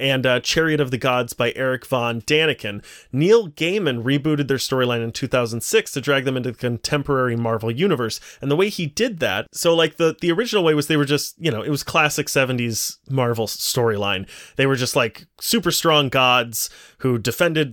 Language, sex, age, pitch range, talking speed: English, male, 30-49, 120-150 Hz, 195 wpm